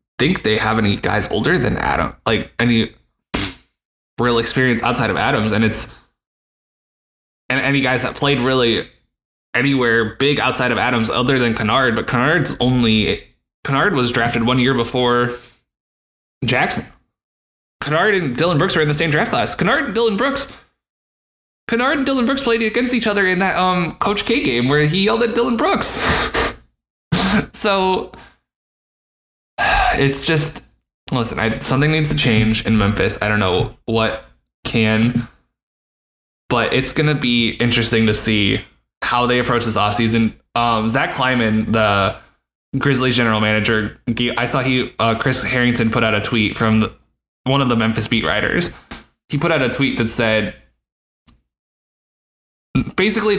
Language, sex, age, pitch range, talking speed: English, male, 20-39, 110-140 Hz, 155 wpm